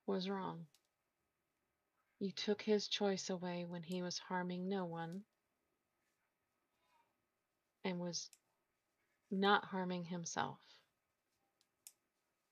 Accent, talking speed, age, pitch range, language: American, 85 wpm, 40-59, 175-215 Hz, English